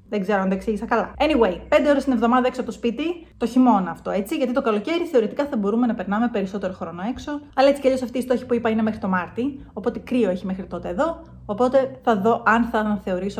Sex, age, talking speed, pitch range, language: female, 30-49, 245 wpm, 200-250 Hz, Greek